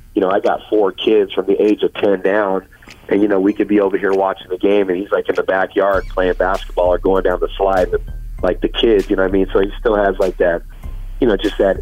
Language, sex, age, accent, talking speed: English, male, 30-49, American, 280 wpm